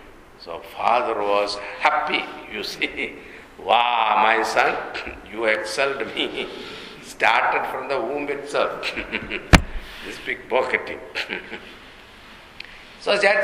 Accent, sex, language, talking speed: Indian, male, English, 95 wpm